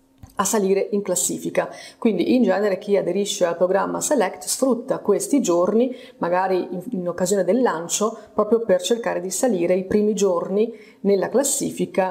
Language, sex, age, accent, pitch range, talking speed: Italian, female, 30-49, native, 180-220 Hz, 150 wpm